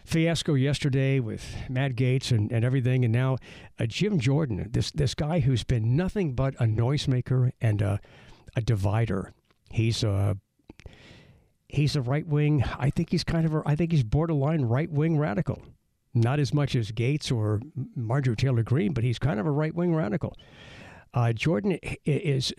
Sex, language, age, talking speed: male, English, 60-79, 175 wpm